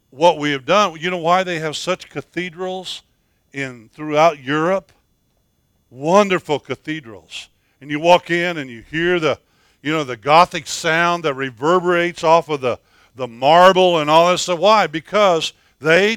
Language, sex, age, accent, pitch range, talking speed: English, male, 60-79, American, 140-185 Hz, 165 wpm